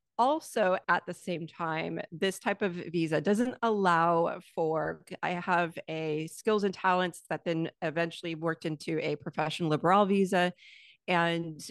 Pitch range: 160-200 Hz